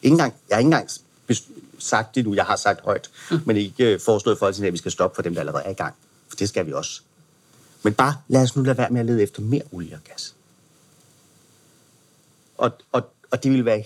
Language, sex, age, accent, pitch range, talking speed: Danish, male, 40-59, native, 100-125 Hz, 235 wpm